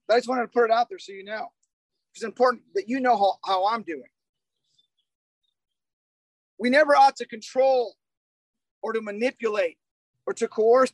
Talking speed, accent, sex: 170 wpm, American, male